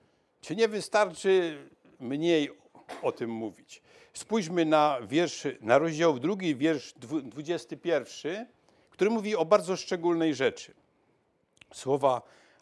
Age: 60-79